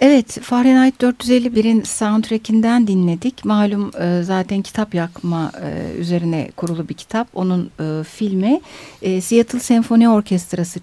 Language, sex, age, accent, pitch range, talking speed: Turkish, female, 60-79, native, 180-250 Hz, 100 wpm